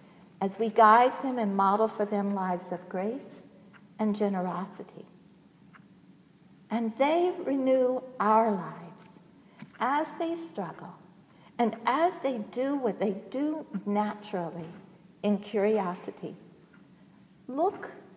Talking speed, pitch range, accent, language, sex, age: 105 wpm, 190-245 Hz, American, English, female, 60-79